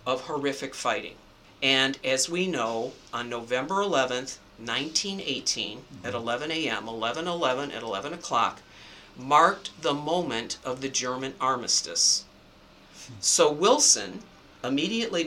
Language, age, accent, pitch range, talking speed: English, 50-69, American, 135-195 Hz, 120 wpm